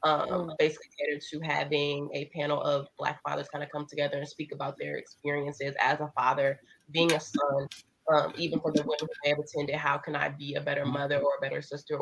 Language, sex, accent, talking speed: English, female, American, 220 wpm